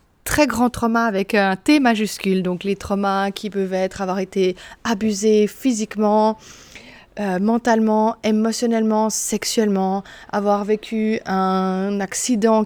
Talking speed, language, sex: 120 wpm, French, female